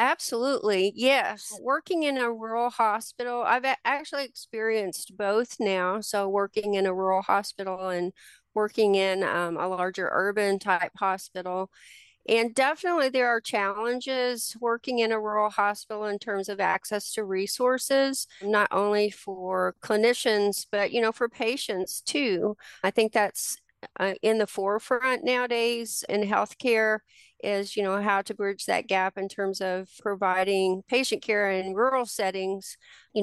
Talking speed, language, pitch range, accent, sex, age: 145 wpm, English, 195-235 Hz, American, female, 40-59